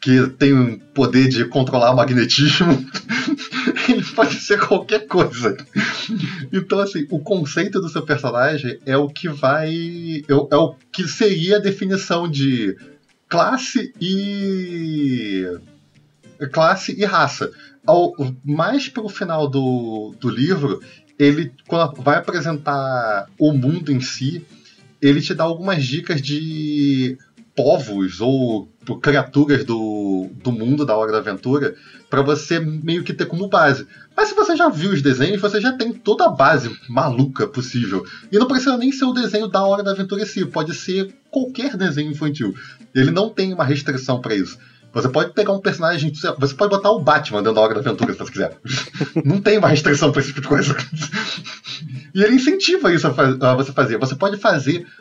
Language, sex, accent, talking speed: Portuguese, male, Brazilian, 165 wpm